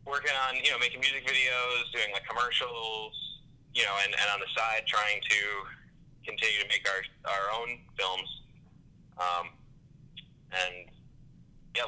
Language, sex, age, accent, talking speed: English, male, 20-39, American, 145 wpm